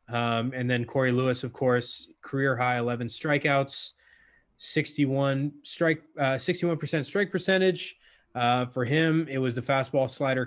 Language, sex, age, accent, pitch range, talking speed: English, male, 20-39, American, 120-140 Hz, 140 wpm